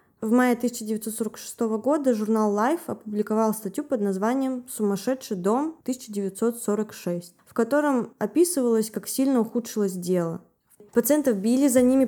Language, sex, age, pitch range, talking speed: Russian, female, 20-39, 200-245 Hz, 120 wpm